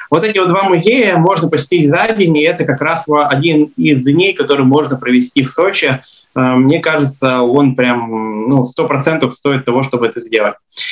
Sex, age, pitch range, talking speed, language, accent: male, 20-39, 135-165 Hz, 180 wpm, Russian, native